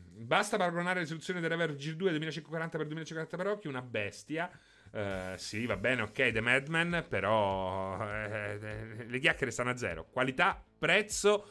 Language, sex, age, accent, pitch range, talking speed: Italian, male, 30-49, native, 115-175 Hz, 155 wpm